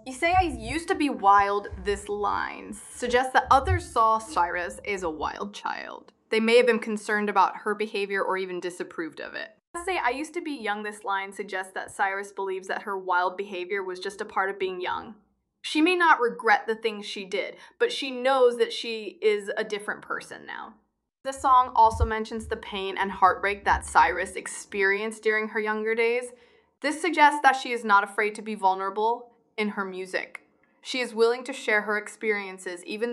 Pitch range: 200-255 Hz